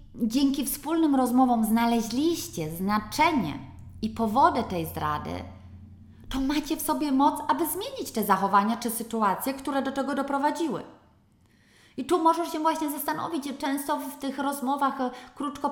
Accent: native